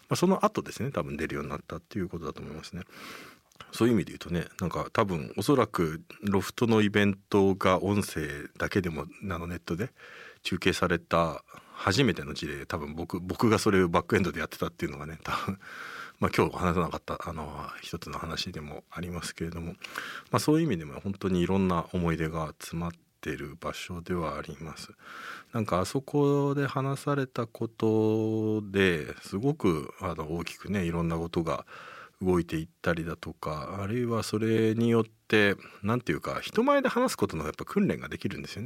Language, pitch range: Japanese, 85-115 Hz